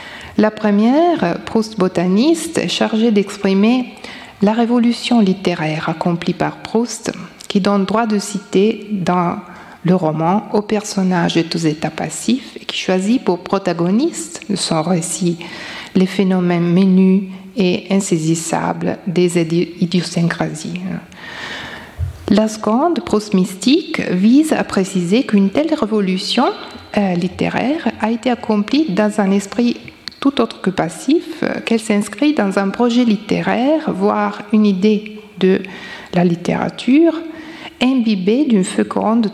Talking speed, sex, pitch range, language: 115 wpm, female, 185-235 Hz, French